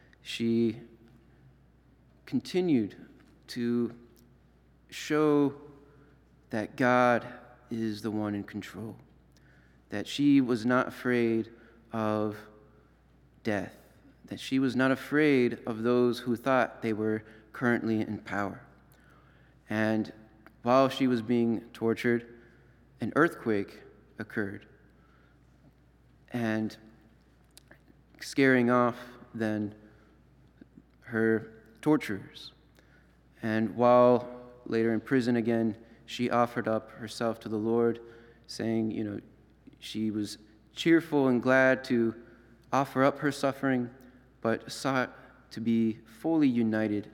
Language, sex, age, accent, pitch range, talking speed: English, male, 30-49, American, 110-125 Hz, 100 wpm